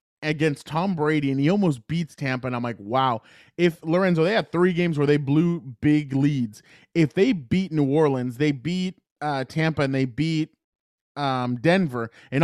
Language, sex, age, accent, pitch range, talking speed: English, male, 20-39, American, 140-170 Hz, 185 wpm